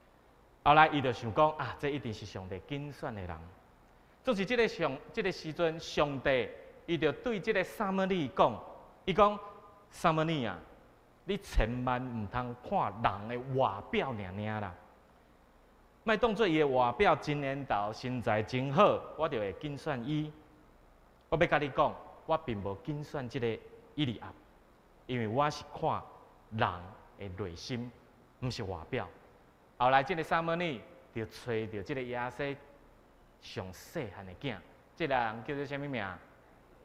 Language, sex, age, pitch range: Chinese, male, 30-49, 95-155 Hz